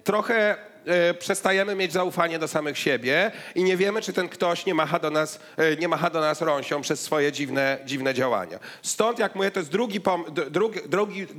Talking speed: 200 wpm